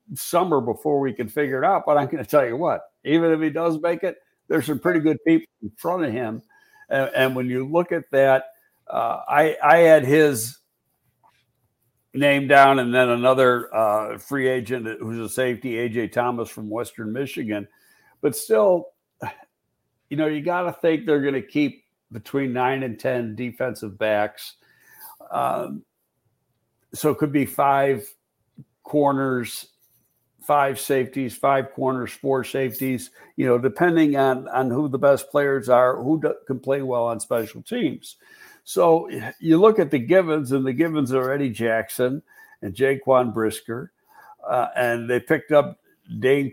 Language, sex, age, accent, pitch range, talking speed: English, male, 60-79, American, 120-150 Hz, 165 wpm